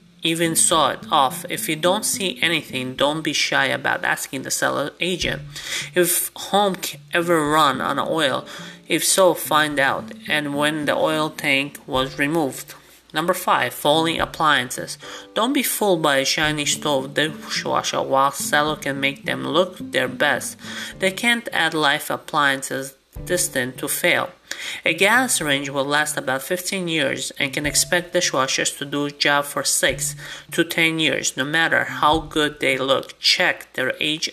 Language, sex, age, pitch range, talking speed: English, male, 30-49, 140-175 Hz, 160 wpm